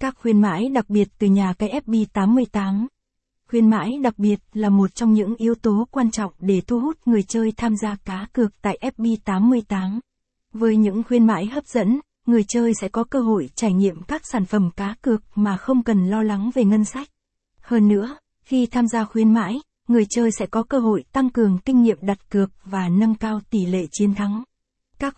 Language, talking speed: Vietnamese, 205 wpm